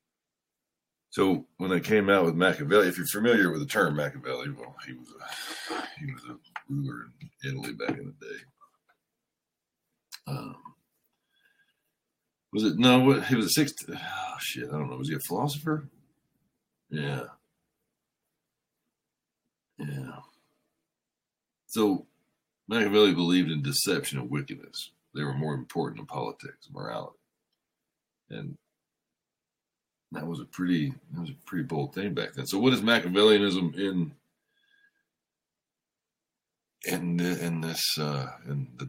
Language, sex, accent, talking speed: English, male, American, 135 wpm